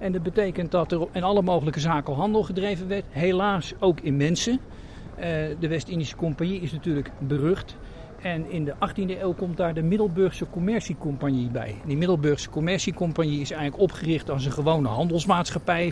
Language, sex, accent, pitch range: Dutch, male, Dutch, 145-185 Hz